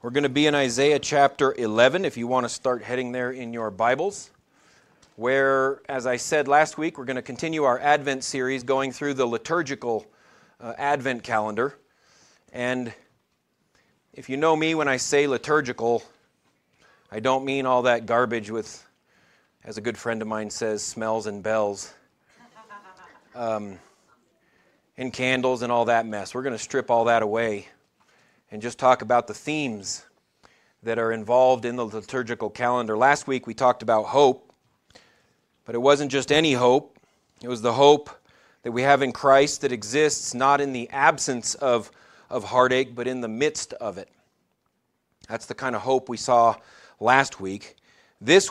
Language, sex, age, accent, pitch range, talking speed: English, male, 40-59, American, 115-140 Hz, 170 wpm